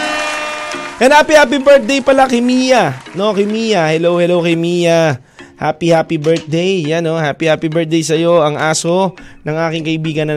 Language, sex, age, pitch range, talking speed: Filipino, male, 20-39, 145-215 Hz, 150 wpm